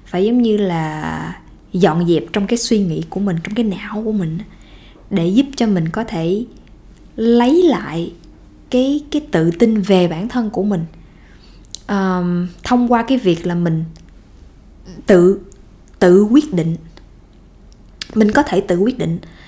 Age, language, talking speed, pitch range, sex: 20-39, Vietnamese, 155 wpm, 180-245 Hz, female